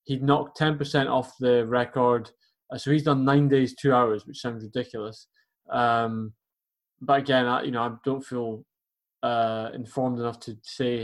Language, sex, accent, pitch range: English, male, British, 120-140 Hz